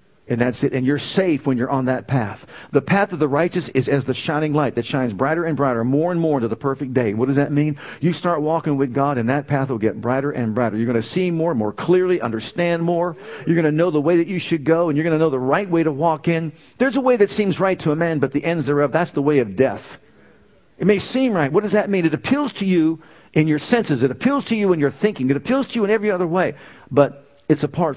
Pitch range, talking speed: 125-165 Hz, 280 wpm